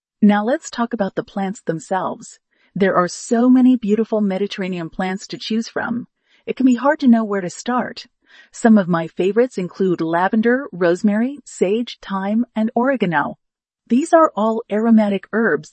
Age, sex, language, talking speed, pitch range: 40-59, female, English, 160 wpm, 195-240 Hz